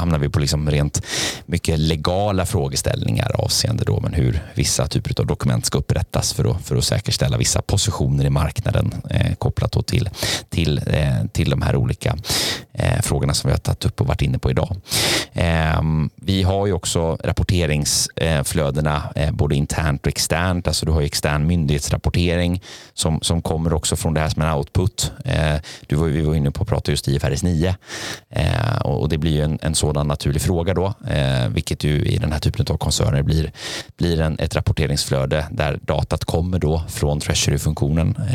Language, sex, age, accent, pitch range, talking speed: Swedish, male, 30-49, native, 75-100 Hz, 160 wpm